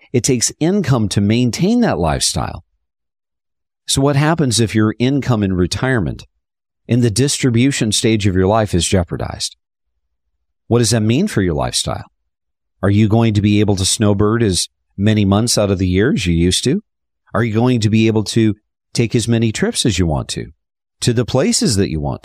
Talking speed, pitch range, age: 190 wpm, 85-120 Hz, 50-69